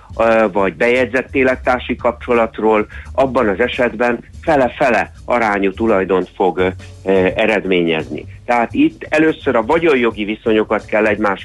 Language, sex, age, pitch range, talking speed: Hungarian, male, 60-79, 100-125 Hz, 110 wpm